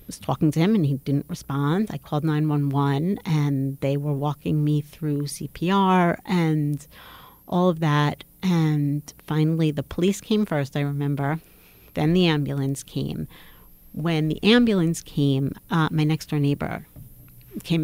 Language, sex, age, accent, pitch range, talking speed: English, female, 40-59, American, 140-165 Hz, 145 wpm